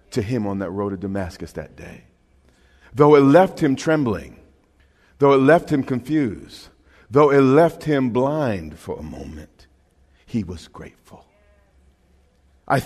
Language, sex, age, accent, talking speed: English, male, 50-69, American, 145 wpm